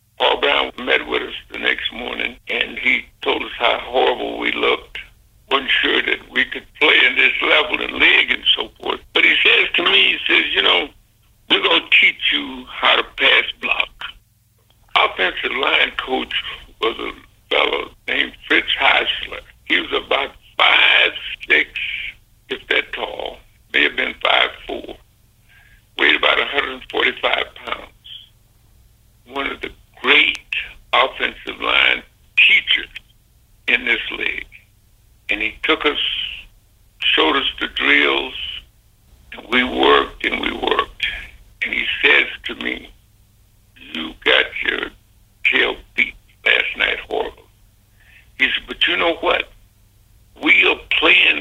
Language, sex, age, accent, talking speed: English, male, 60-79, American, 140 wpm